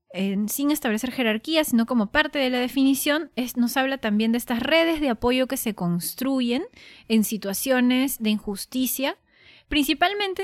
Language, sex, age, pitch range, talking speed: Spanish, female, 20-39, 195-255 Hz, 150 wpm